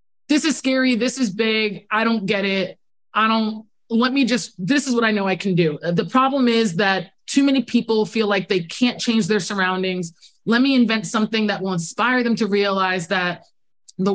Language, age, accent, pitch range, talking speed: English, 20-39, American, 185-225 Hz, 210 wpm